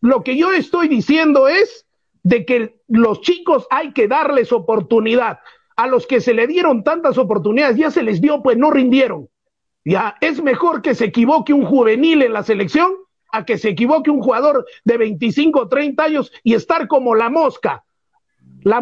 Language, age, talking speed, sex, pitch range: Spanish, 50-69, 180 wpm, male, 255-345 Hz